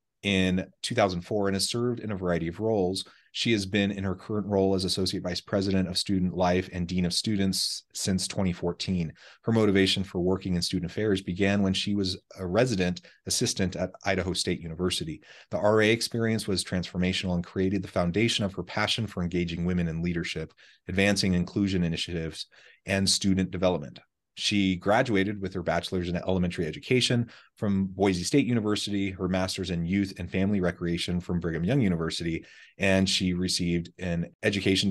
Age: 30-49